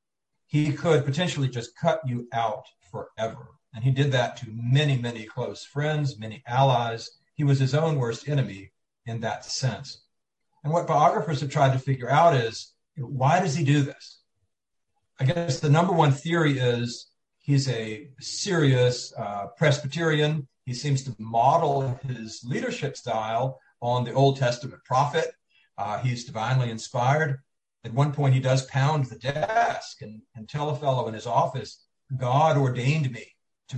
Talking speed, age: 160 wpm, 40-59